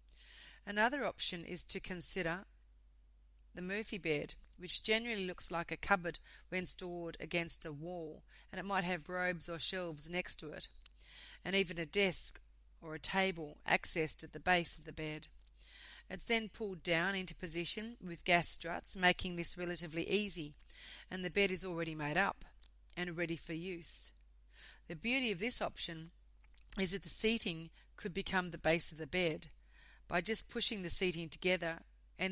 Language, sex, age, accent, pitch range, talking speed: English, female, 40-59, Australian, 160-190 Hz, 165 wpm